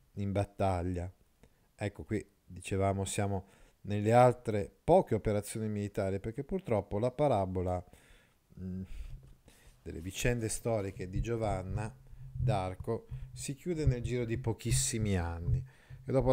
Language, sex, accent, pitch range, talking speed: Italian, male, native, 100-130 Hz, 110 wpm